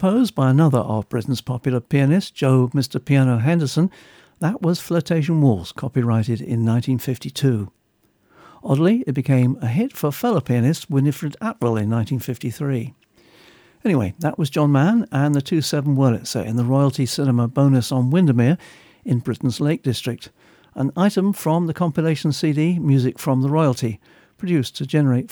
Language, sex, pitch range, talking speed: English, male, 120-155 Hz, 150 wpm